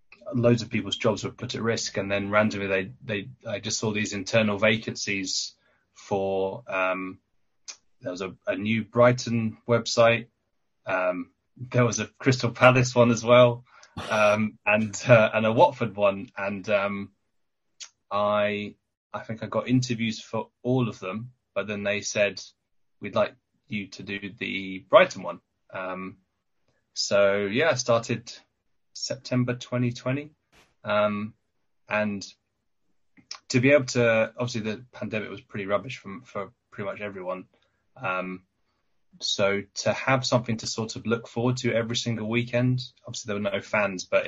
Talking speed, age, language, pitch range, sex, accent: 155 wpm, 20-39, English, 100-120 Hz, male, British